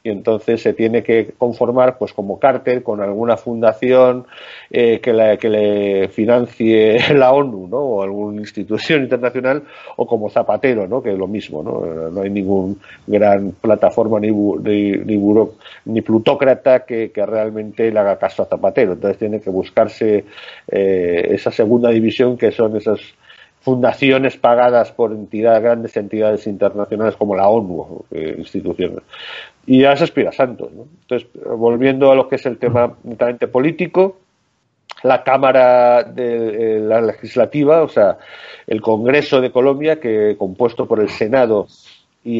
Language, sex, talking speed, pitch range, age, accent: Spanish, male, 155 wpm, 105-130 Hz, 50-69, Spanish